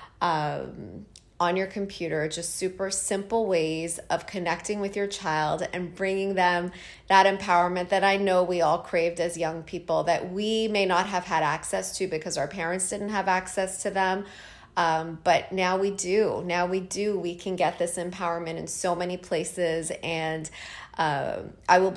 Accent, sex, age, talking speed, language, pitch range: American, female, 30-49, 175 wpm, English, 170-195 Hz